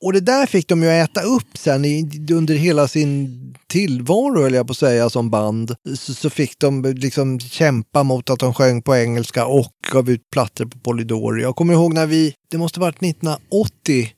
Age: 30-49